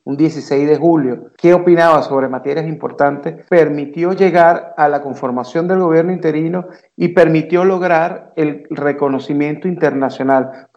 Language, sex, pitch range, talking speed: English, male, 140-170 Hz, 135 wpm